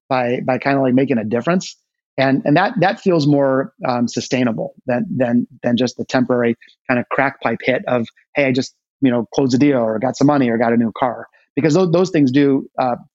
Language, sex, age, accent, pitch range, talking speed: English, male, 30-49, American, 125-160 Hz, 235 wpm